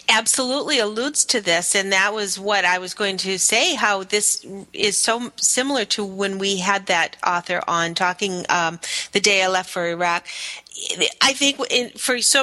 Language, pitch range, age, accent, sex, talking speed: English, 190-235 Hz, 40-59, American, female, 185 wpm